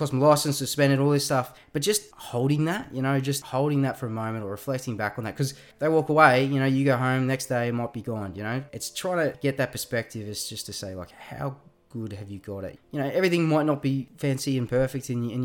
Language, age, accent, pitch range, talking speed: English, 20-39, Australian, 105-135 Hz, 260 wpm